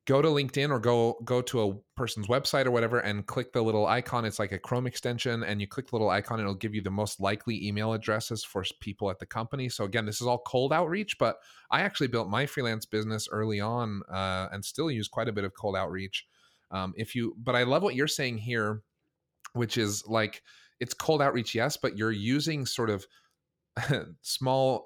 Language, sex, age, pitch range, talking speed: English, male, 30-49, 100-125 Hz, 220 wpm